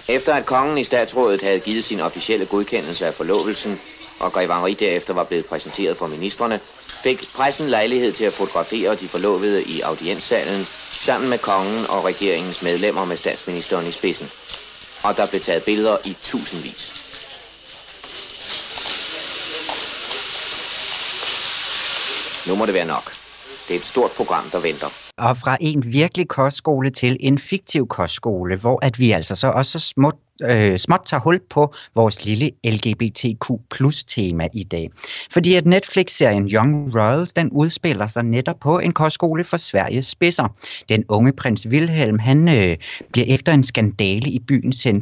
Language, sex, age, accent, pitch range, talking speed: Danish, male, 30-49, native, 105-140 Hz, 150 wpm